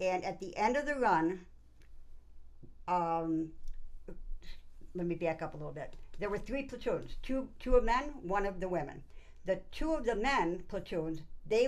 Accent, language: American, English